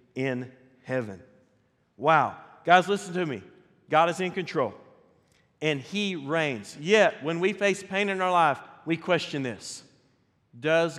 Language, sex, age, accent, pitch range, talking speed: English, male, 40-59, American, 135-175 Hz, 140 wpm